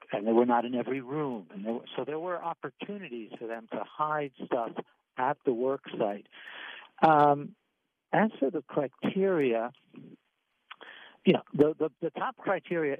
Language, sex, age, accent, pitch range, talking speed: English, male, 60-79, American, 125-155 Hz, 160 wpm